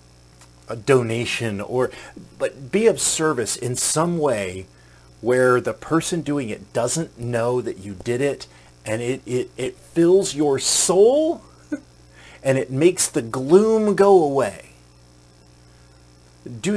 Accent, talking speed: American, 125 wpm